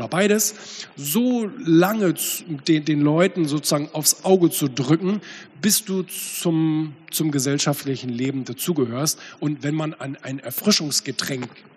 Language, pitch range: German, 130-175 Hz